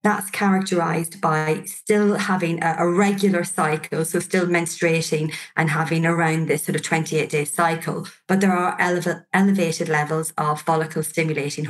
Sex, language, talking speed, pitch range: female, English, 135 wpm, 155-190 Hz